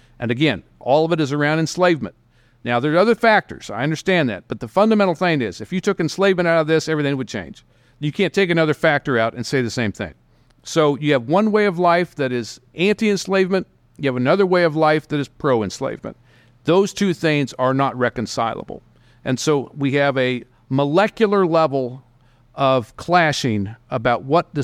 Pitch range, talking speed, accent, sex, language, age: 125-165 Hz, 190 wpm, American, male, English, 50-69